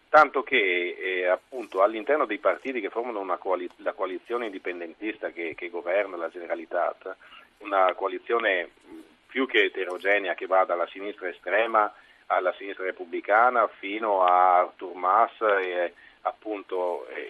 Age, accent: 40-59, native